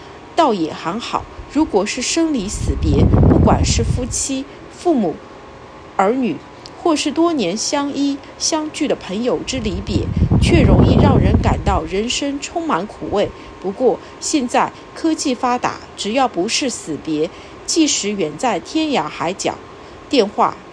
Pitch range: 195-305 Hz